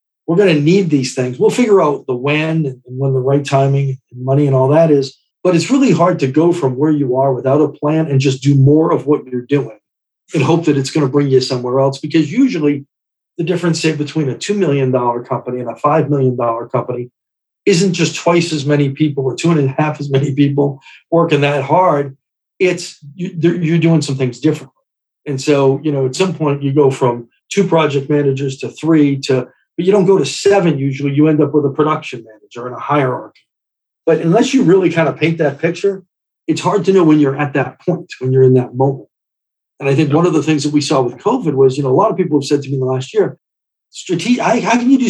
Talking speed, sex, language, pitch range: 240 wpm, male, English, 135-165 Hz